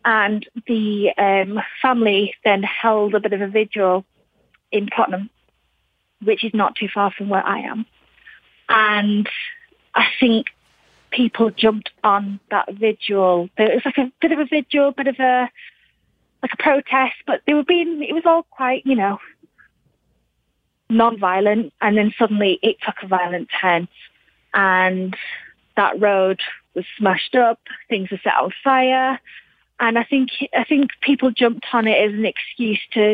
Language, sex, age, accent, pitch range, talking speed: English, female, 30-49, British, 195-235 Hz, 160 wpm